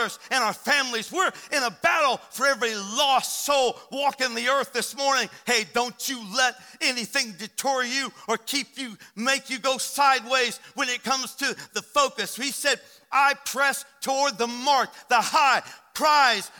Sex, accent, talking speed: male, American, 165 wpm